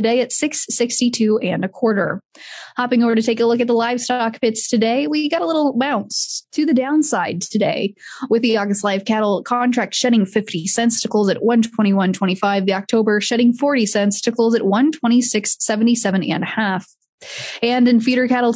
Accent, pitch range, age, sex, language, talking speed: American, 200-245 Hz, 20-39, female, English, 180 wpm